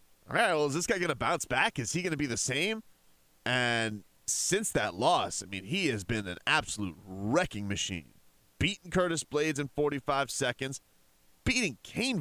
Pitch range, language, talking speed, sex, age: 105-160 Hz, English, 175 wpm, male, 30-49